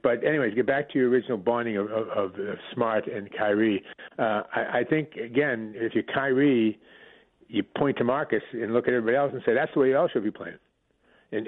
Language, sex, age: English, male, 50-69